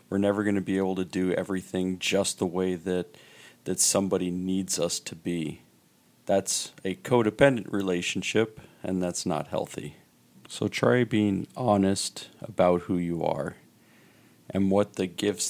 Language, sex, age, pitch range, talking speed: English, male, 40-59, 90-105 Hz, 150 wpm